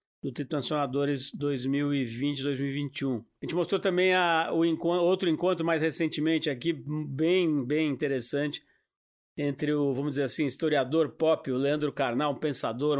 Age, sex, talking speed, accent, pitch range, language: 50-69, male, 140 wpm, Brazilian, 145-180 Hz, Portuguese